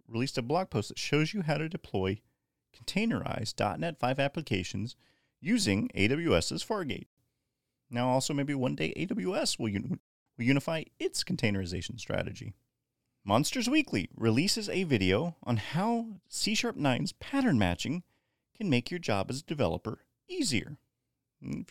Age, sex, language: 40-59, male, English